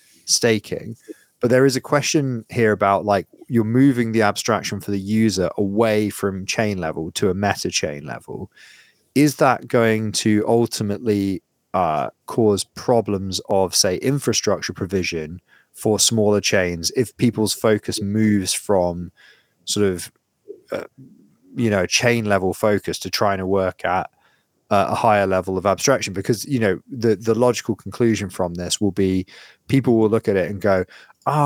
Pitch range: 95-120 Hz